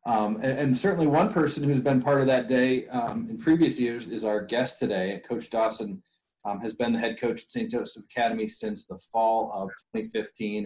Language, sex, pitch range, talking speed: English, male, 100-120 Hz, 210 wpm